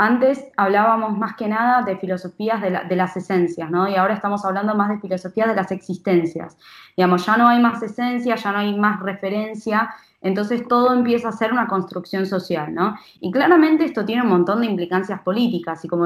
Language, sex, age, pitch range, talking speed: Spanish, female, 20-39, 190-245 Hz, 200 wpm